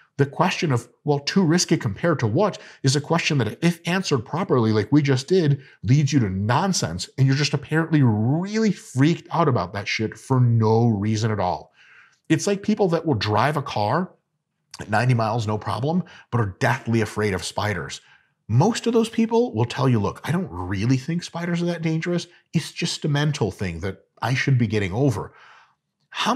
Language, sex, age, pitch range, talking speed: English, male, 40-59, 110-160 Hz, 195 wpm